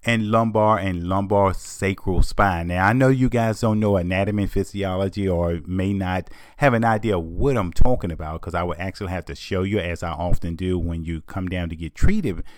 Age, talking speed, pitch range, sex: 30-49, 215 wpm, 90-110 Hz, male